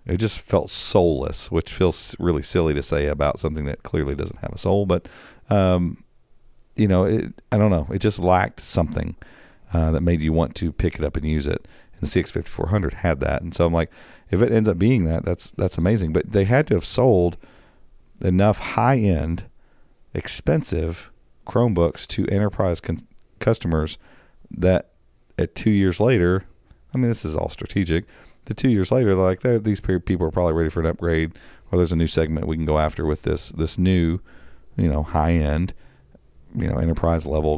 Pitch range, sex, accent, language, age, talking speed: 80-105 Hz, male, American, English, 40-59, 195 wpm